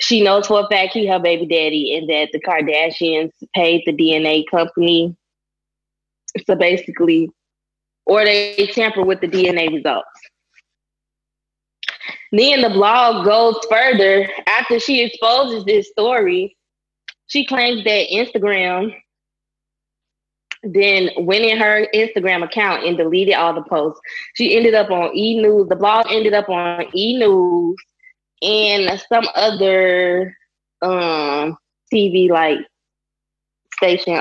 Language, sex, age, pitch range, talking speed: English, female, 20-39, 175-220 Hz, 120 wpm